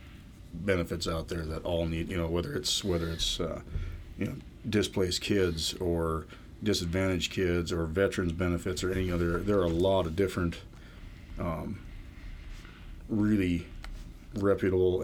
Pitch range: 85-95 Hz